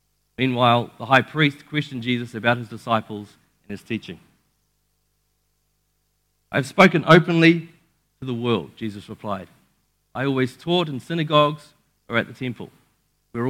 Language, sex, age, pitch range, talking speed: English, male, 40-59, 120-150 Hz, 140 wpm